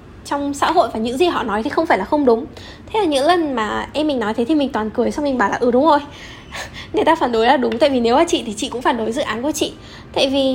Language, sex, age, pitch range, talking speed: Vietnamese, female, 10-29, 235-315 Hz, 320 wpm